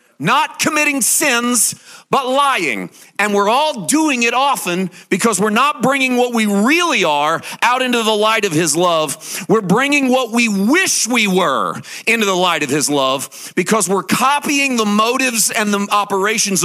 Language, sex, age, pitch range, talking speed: English, male, 40-59, 190-255 Hz, 170 wpm